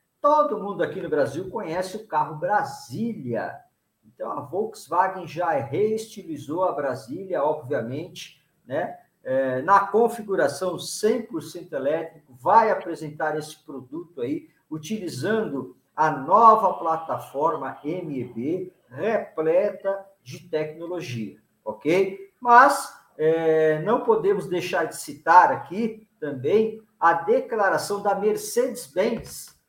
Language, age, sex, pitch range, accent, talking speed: Portuguese, 50-69, male, 155-210 Hz, Brazilian, 95 wpm